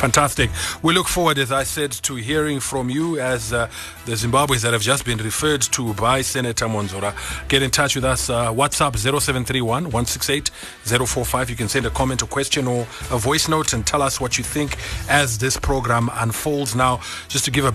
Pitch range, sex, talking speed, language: 115-140 Hz, male, 200 wpm, English